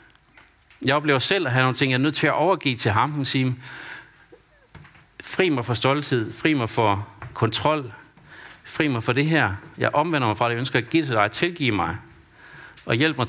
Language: Danish